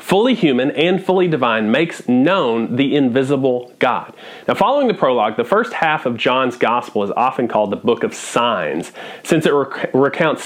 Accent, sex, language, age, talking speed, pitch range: American, male, English, 40-59, 170 wpm, 115-150 Hz